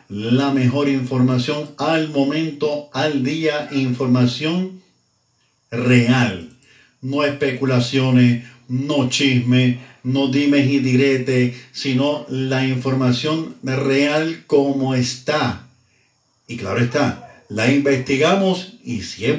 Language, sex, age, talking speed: Spanish, male, 50-69, 95 wpm